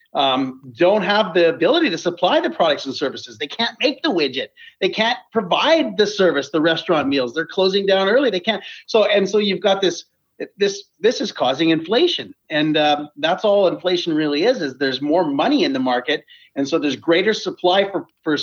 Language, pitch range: English, 160-230 Hz